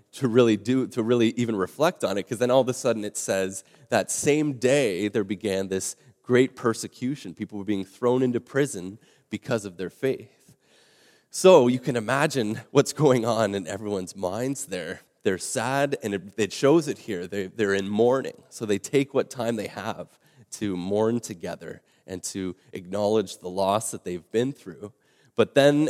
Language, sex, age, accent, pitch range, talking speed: English, male, 30-49, American, 100-130 Hz, 180 wpm